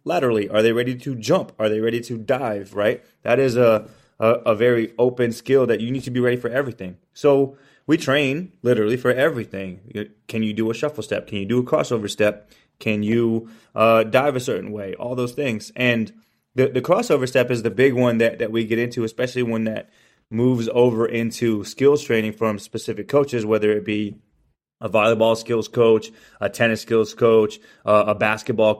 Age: 20-39